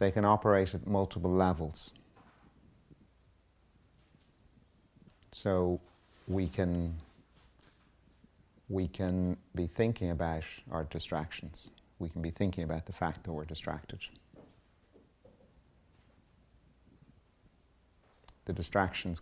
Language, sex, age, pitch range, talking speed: English, male, 40-59, 80-95 Hz, 85 wpm